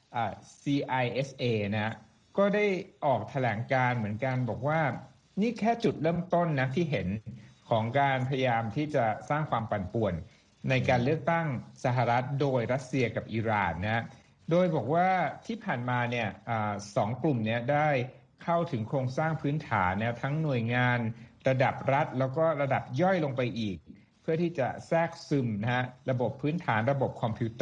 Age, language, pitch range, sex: 60-79, Thai, 115-150 Hz, male